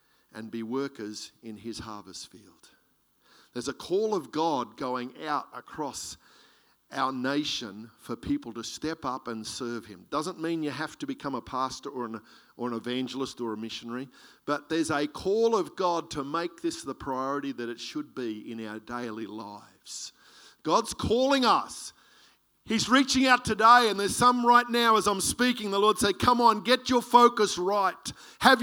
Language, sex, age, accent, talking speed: English, male, 50-69, Australian, 180 wpm